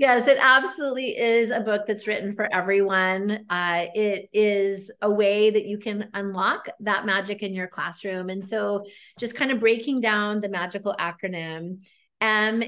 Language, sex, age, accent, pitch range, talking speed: English, female, 30-49, American, 185-220 Hz, 165 wpm